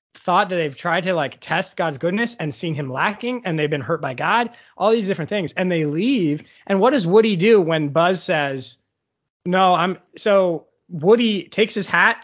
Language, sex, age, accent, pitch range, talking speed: English, male, 20-39, American, 155-215 Hz, 200 wpm